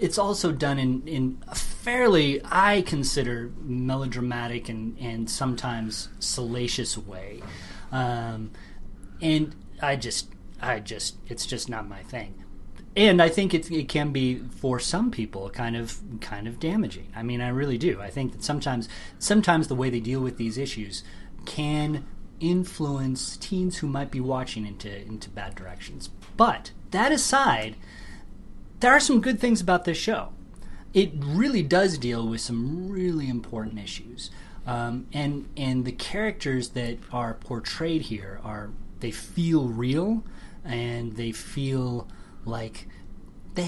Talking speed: 145 wpm